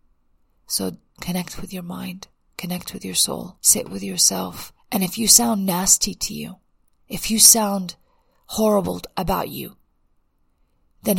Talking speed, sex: 140 wpm, female